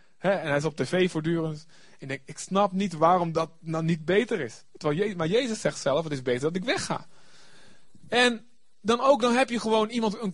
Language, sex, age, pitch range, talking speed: Dutch, male, 30-49, 145-195 Hz, 220 wpm